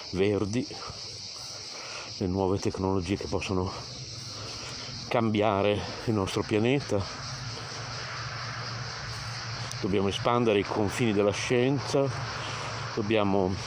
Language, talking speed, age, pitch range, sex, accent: Italian, 75 wpm, 50-69, 95-120 Hz, male, native